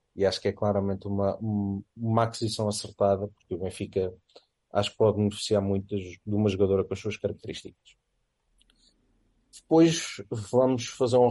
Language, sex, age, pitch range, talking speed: Portuguese, male, 30-49, 95-110 Hz, 150 wpm